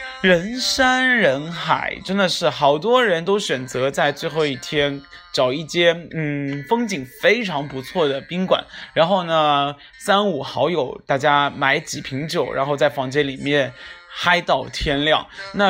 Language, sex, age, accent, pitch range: Chinese, male, 20-39, native, 140-195 Hz